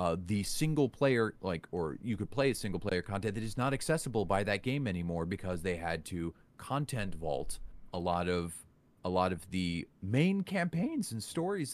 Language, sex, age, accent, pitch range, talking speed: English, male, 30-49, American, 85-105 Hz, 185 wpm